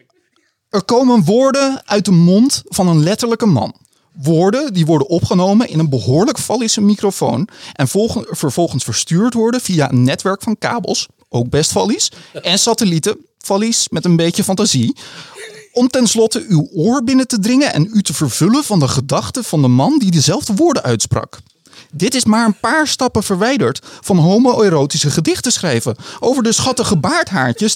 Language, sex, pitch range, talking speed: Dutch, male, 150-230 Hz, 160 wpm